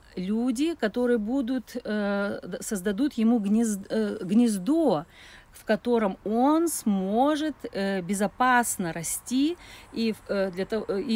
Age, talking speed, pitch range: 40-59, 70 wpm, 190-250 Hz